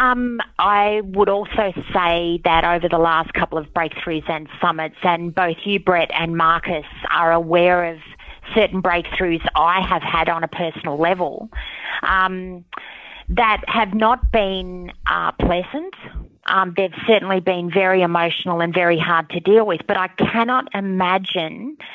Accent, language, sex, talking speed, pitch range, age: Australian, English, female, 150 wpm, 170-205 Hz, 30-49